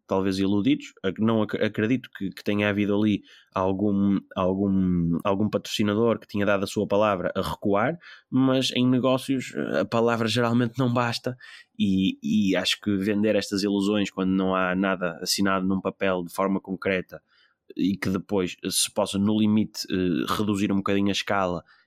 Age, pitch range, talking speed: 20-39, 90-100 Hz, 155 wpm